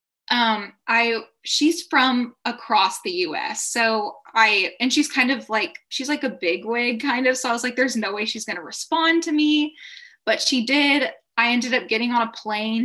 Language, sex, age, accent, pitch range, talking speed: English, female, 10-29, American, 205-250 Hz, 210 wpm